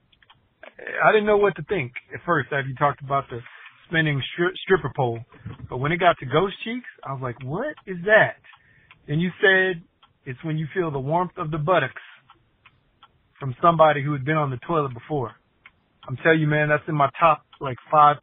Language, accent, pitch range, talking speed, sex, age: English, American, 135-170 Hz, 200 wpm, male, 40-59